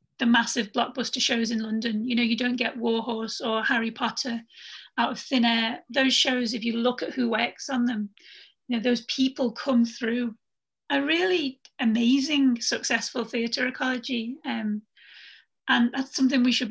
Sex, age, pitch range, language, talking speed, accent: female, 30-49, 230-260 Hz, English, 170 wpm, British